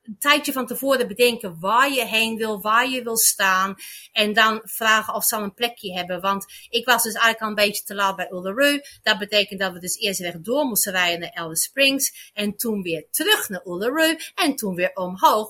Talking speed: 215 wpm